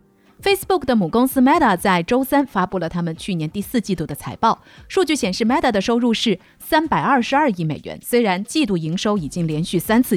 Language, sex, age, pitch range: Chinese, female, 30-49, 175-255 Hz